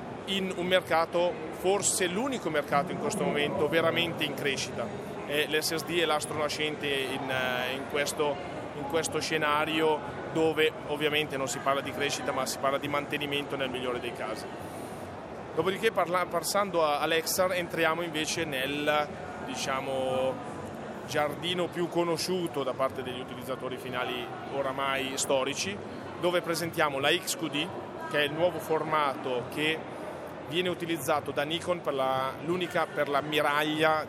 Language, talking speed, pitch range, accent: Italian, 135 wpm, 140-170 Hz, native